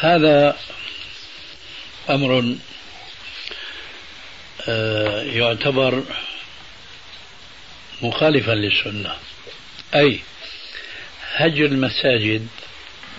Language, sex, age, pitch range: Arabic, male, 70-89, 120-150 Hz